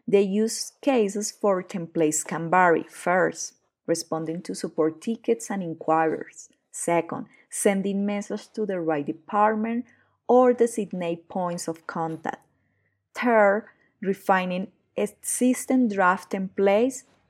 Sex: female